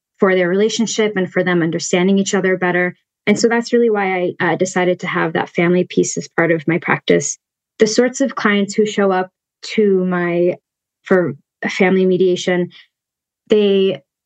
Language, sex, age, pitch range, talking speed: English, female, 20-39, 175-200 Hz, 175 wpm